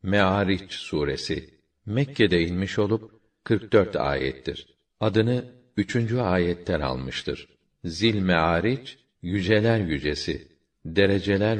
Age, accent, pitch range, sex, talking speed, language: 50-69, native, 85-105 Hz, male, 85 wpm, Turkish